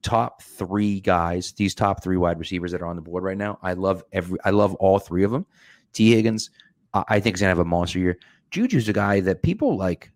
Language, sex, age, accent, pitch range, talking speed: English, male, 30-49, American, 95-125 Hz, 235 wpm